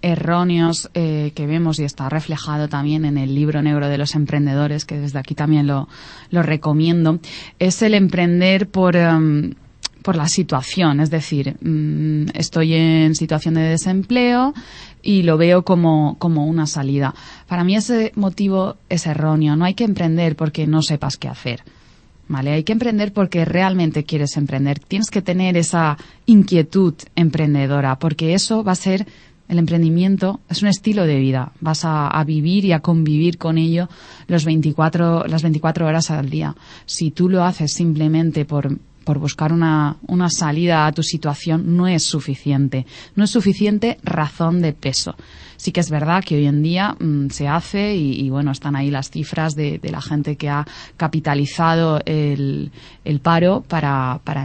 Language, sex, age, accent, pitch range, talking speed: Spanish, female, 20-39, Spanish, 150-175 Hz, 165 wpm